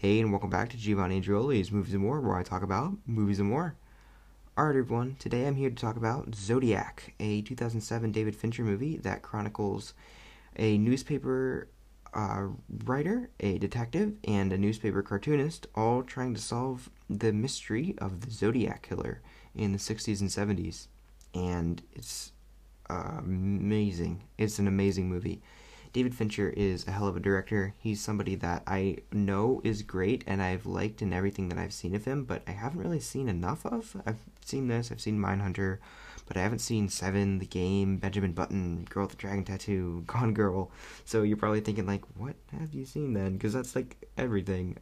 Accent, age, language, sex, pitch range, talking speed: American, 20-39, English, male, 95-115 Hz, 180 wpm